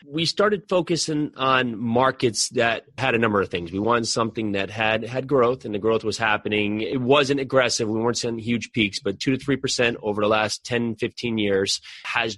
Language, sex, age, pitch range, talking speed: English, male, 30-49, 100-120 Hz, 205 wpm